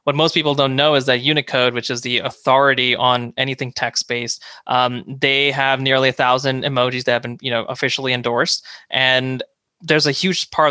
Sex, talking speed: male, 190 wpm